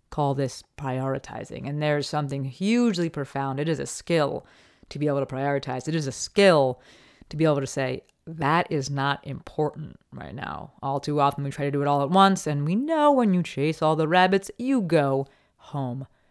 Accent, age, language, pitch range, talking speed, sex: American, 30-49, English, 140-195 Hz, 200 wpm, female